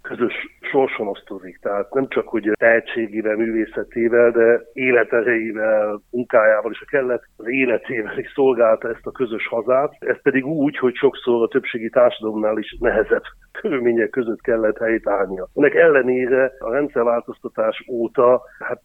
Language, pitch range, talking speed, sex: Hungarian, 105-130 Hz, 135 wpm, male